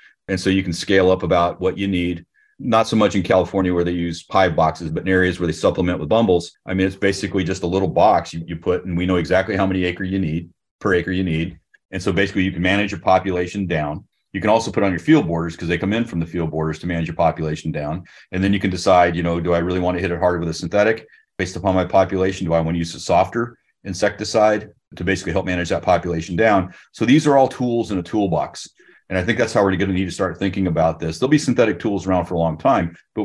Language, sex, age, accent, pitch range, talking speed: English, male, 30-49, American, 85-100 Hz, 275 wpm